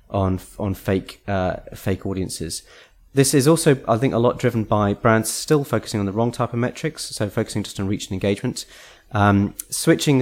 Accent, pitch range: British, 100-125 Hz